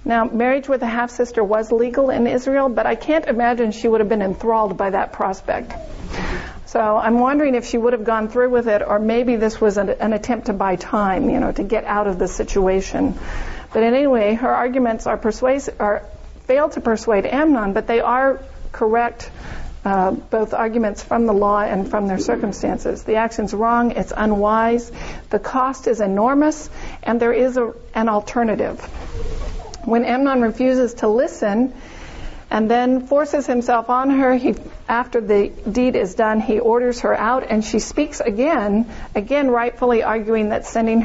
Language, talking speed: English, 175 wpm